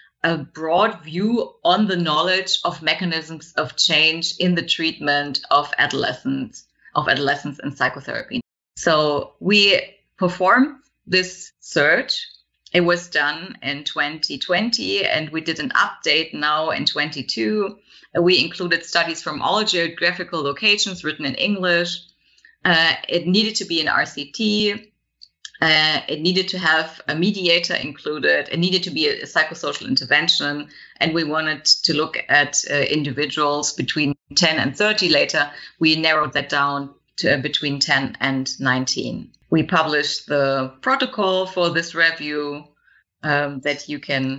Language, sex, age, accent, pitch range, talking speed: Polish, female, 30-49, German, 150-185 Hz, 140 wpm